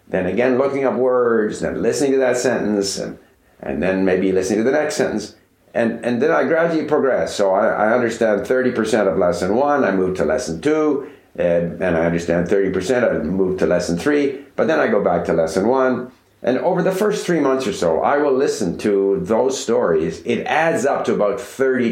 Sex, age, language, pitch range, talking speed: male, 60-79, English, 95-135 Hz, 210 wpm